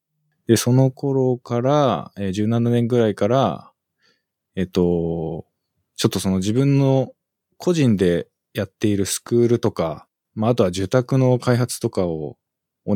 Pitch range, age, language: 90-130 Hz, 20-39, Japanese